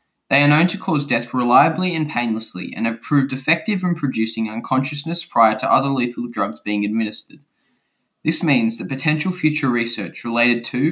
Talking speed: 170 wpm